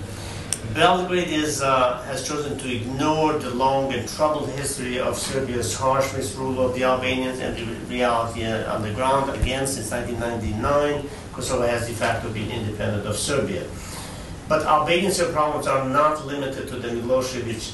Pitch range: 110-135 Hz